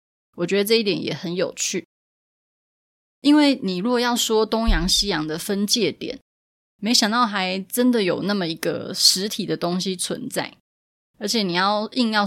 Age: 20-39